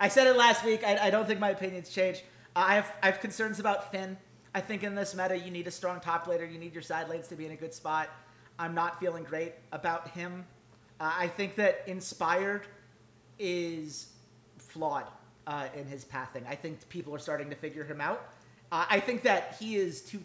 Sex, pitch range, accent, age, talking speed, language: male, 155-190 Hz, American, 40-59, 220 wpm, English